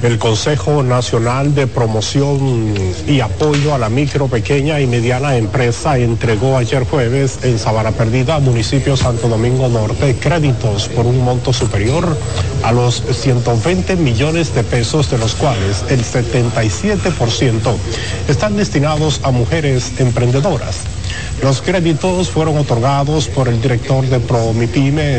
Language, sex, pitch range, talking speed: Spanish, male, 115-135 Hz, 130 wpm